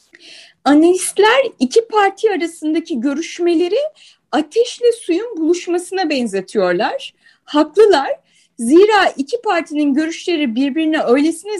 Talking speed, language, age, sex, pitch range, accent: 85 wpm, Turkish, 30-49, female, 280-370 Hz, native